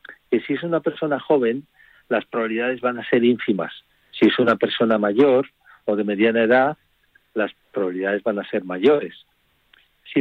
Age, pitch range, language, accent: 50-69, 115-150 Hz, Spanish, Spanish